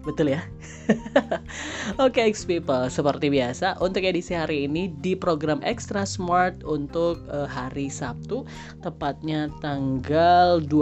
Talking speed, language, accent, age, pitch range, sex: 120 wpm, Indonesian, native, 20-39, 125-165 Hz, female